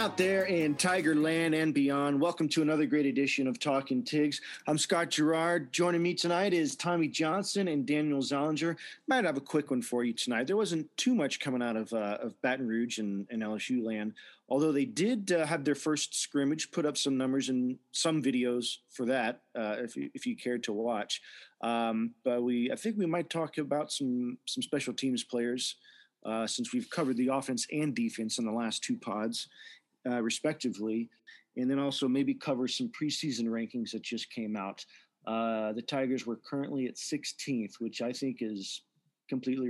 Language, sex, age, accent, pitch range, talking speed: English, male, 40-59, American, 120-170 Hz, 195 wpm